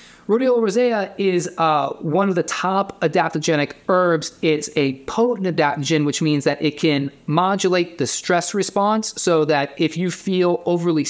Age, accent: 30-49, American